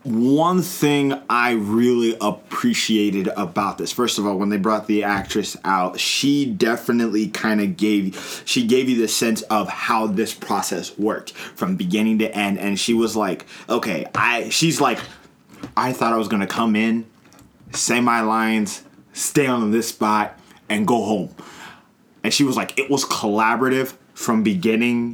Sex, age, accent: male, 20-39, American